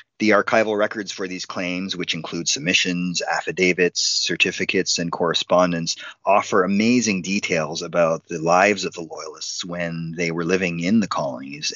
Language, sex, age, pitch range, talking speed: English, male, 30-49, 85-100 Hz, 150 wpm